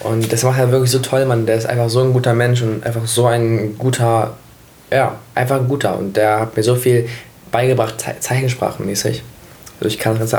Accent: German